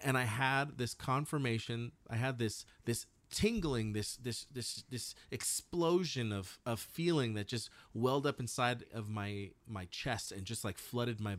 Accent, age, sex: American, 30-49, male